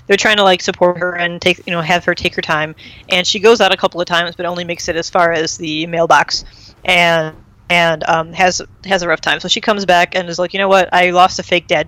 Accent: American